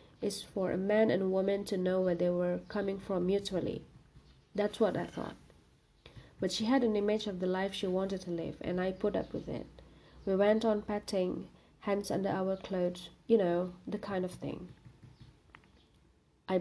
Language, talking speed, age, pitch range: Indonesian, 185 wpm, 30-49, 180-210 Hz